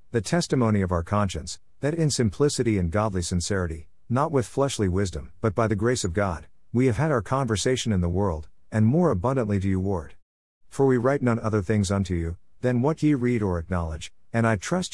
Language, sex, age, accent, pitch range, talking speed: English, male, 50-69, American, 90-125 Hz, 210 wpm